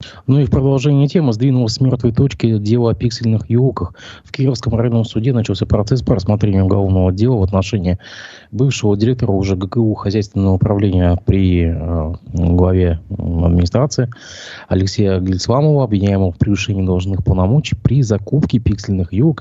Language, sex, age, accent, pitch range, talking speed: Russian, male, 20-39, native, 95-120 Hz, 145 wpm